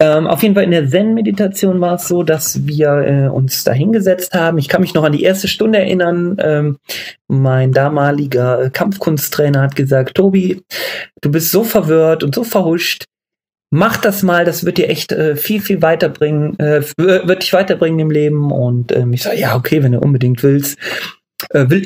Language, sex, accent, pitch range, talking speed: German, male, German, 145-190 Hz, 185 wpm